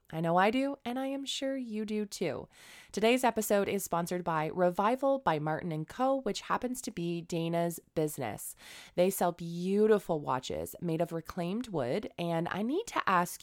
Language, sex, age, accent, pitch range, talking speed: English, female, 20-39, American, 155-205 Hz, 175 wpm